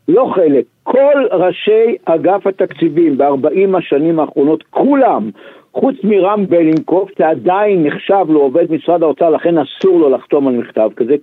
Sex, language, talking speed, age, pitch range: male, Hebrew, 135 wpm, 60-79, 160-225 Hz